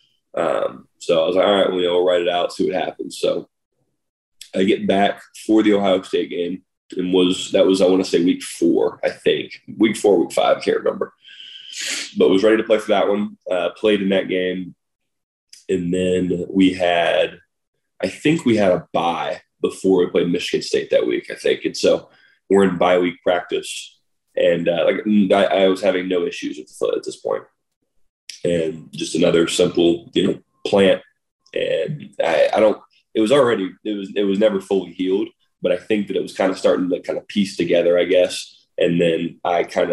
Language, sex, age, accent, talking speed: English, male, 20-39, American, 205 wpm